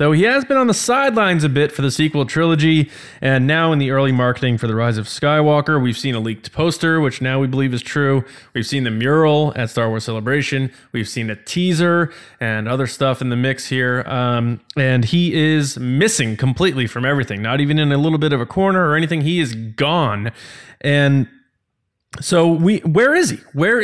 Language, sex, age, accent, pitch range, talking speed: English, male, 20-39, American, 125-155 Hz, 210 wpm